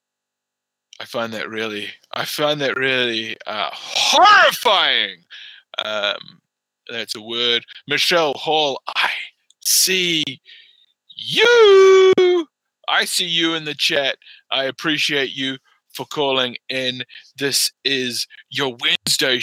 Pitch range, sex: 125-155 Hz, male